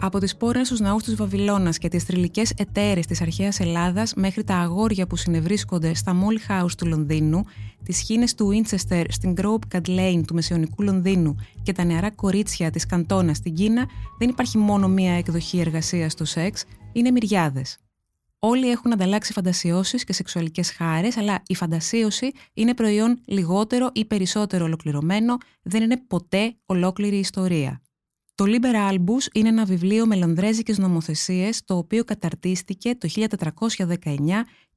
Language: Greek